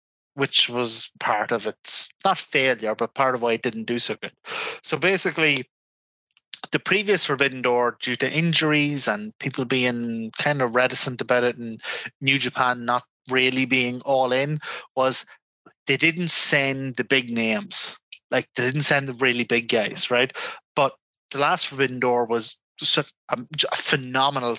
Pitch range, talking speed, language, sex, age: 125-150 Hz, 165 wpm, English, male, 30-49